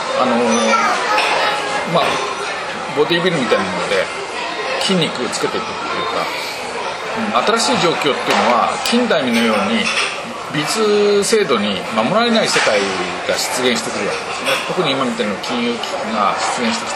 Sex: male